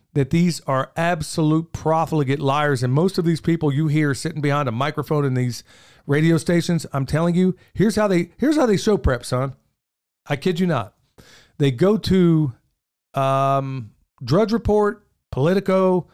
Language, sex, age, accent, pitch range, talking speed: English, male, 40-59, American, 135-190 Hz, 165 wpm